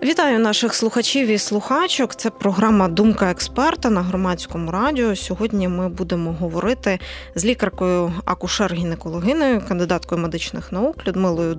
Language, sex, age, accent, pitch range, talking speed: Ukrainian, female, 20-39, native, 170-225 Hz, 120 wpm